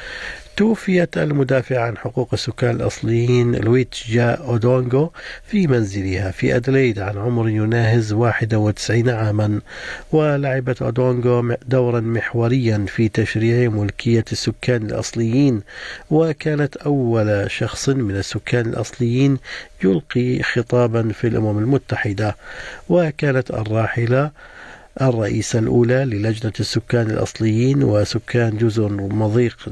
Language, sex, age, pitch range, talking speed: Arabic, male, 50-69, 110-130 Hz, 95 wpm